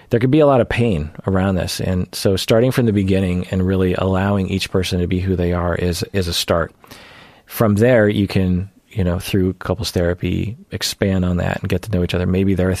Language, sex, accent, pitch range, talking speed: English, male, American, 90-115 Hz, 235 wpm